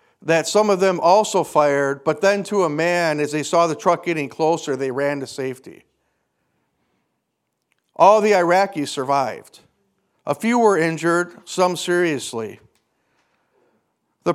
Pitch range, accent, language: 145-185 Hz, American, English